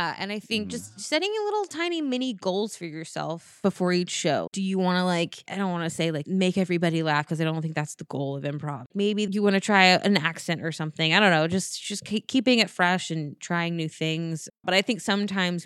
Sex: female